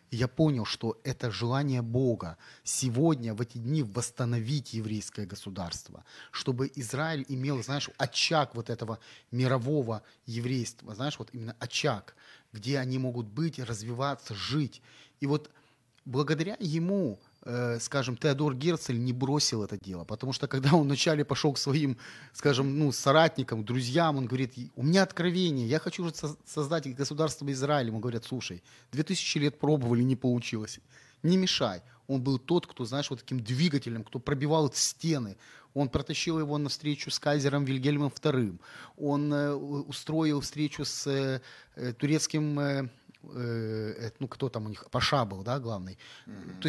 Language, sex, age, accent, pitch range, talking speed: Ukrainian, male, 30-49, native, 120-150 Hz, 140 wpm